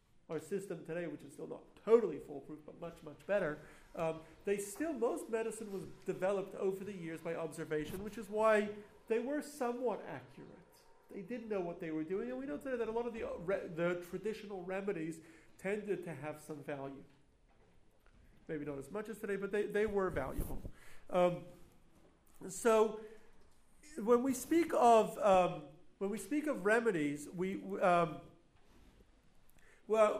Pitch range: 155-215 Hz